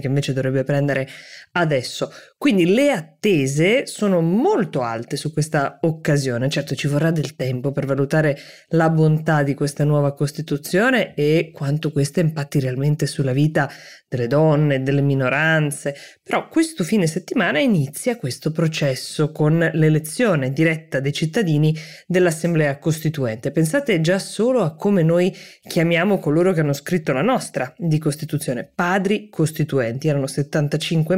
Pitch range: 145-185 Hz